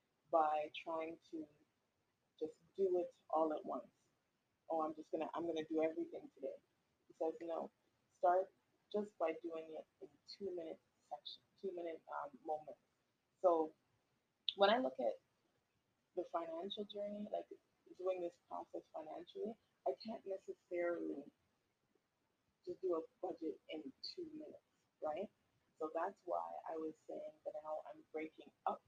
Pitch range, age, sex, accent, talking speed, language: 160-210 Hz, 20-39, female, American, 145 wpm, English